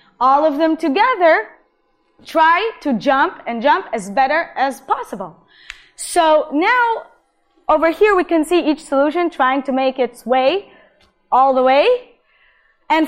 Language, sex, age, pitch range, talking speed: Hebrew, female, 20-39, 260-350 Hz, 140 wpm